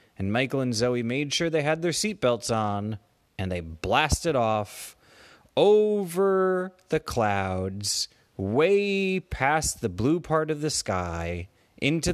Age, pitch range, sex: 30-49, 100-160 Hz, male